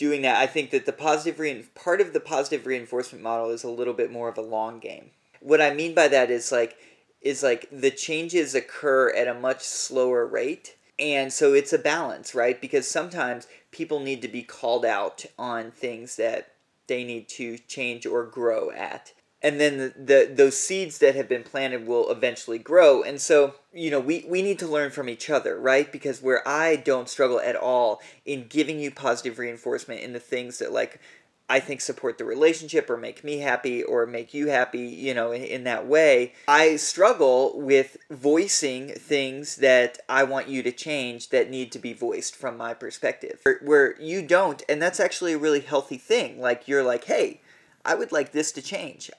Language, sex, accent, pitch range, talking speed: English, male, American, 125-165 Hz, 205 wpm